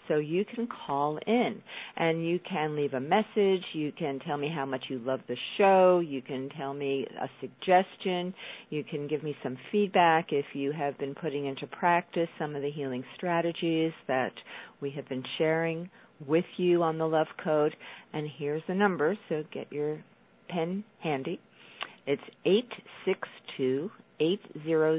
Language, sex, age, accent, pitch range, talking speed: English, female, 50-69, American, 140-185 Hz, 170 wpm